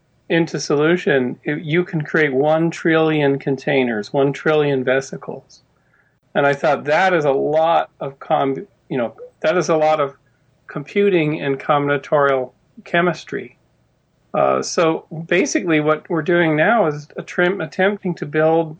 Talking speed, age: 145 wpm, 40-59